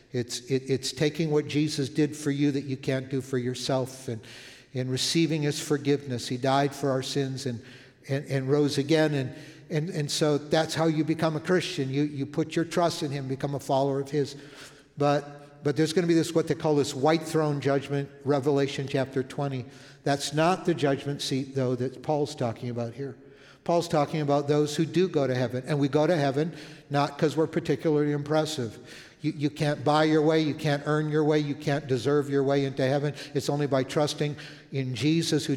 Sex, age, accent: male, 50-69, American